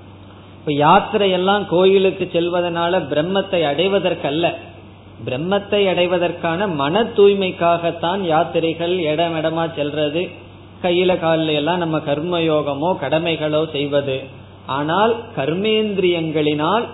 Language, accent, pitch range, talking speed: Tamil, native, 140-180 Hz, 80 wpm